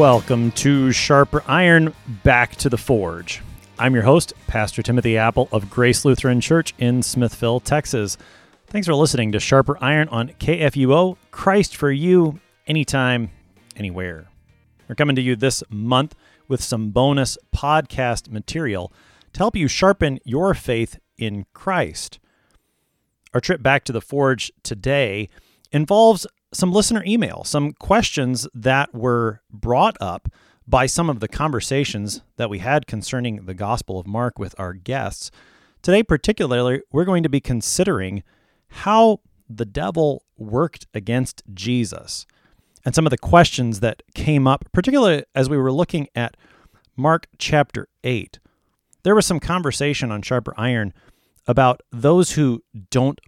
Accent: American